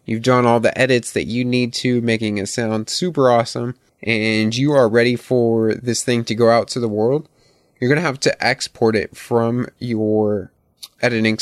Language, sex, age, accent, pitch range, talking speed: English, male, 20-39, American, 105-125 Hz, 195 wpm